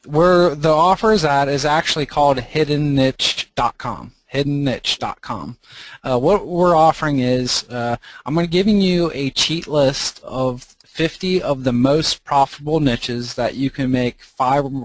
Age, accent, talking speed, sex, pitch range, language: 20-39, American, 145 wpm, male, 125-145 Hz, English